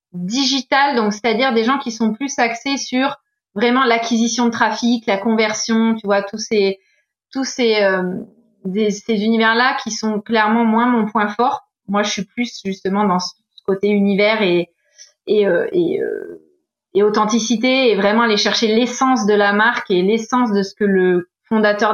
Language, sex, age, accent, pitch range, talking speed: French, female, 20-39, French, 205-260 Hz, 180 wpm